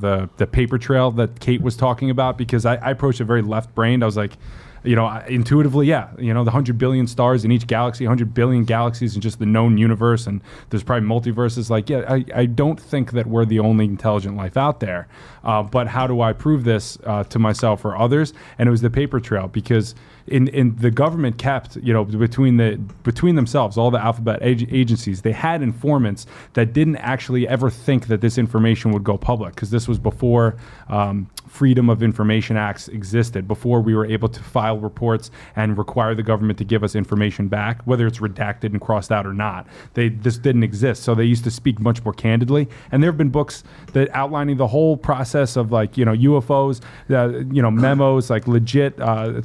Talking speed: 210 wpm